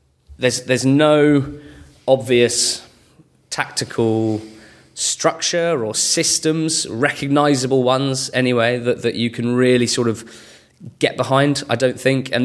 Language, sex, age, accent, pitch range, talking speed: English, male, 20-39, British, 110-125 Hz, 115 wpm